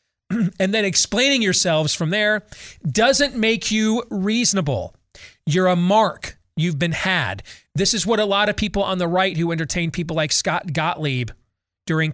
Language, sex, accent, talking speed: English, male, American, 165 wpm